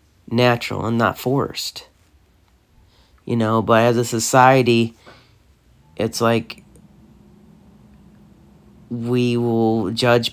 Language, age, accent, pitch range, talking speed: English, 40-59, American, 110-120 Hz, 85 wpm